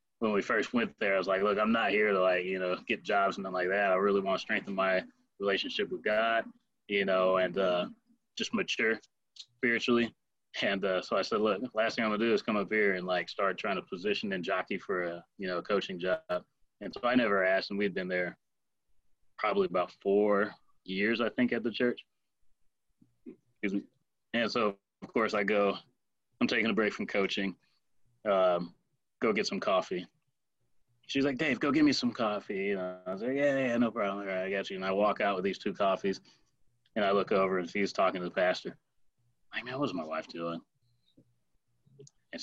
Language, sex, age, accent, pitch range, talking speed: English, male, 20-39, American, 100-140 Hz, 210 wpm